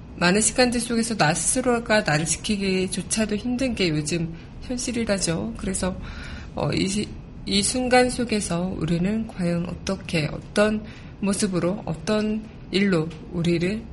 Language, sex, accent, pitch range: Korean, female, native, 175-210 Hz